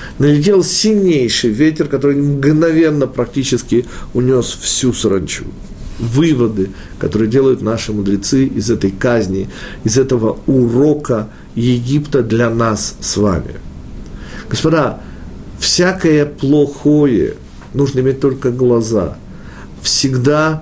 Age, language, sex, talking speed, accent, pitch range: 50-69, Russian, male, 95 wpm, native, 110-145 Hz